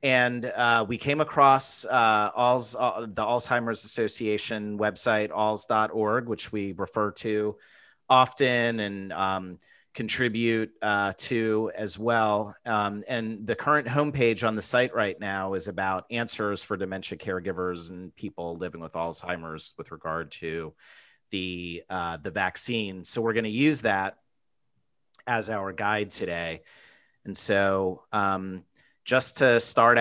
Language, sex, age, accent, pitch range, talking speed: English, male, 30-49, American, 95-115 Hz, 135 wpm